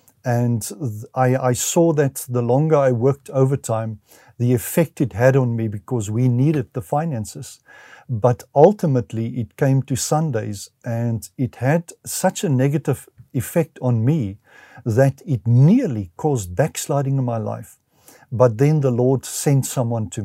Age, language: 50-69, English